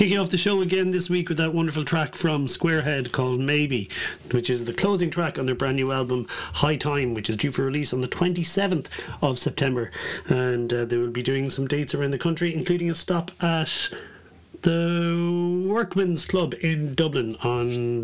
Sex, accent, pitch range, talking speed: male, Irish, 120-165 Hz, 195 wpm